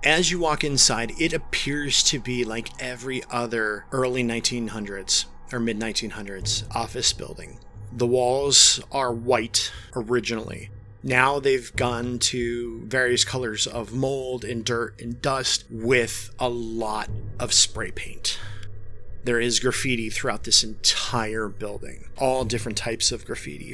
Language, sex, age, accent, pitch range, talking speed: English, male, 30-49, American, 110-130 Hz, 130 wpm